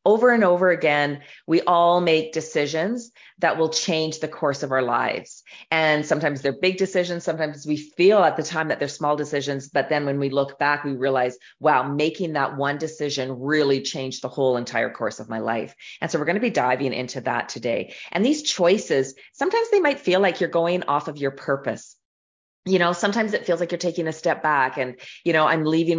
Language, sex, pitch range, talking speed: English, female, 135-175 Hz, 215 wpm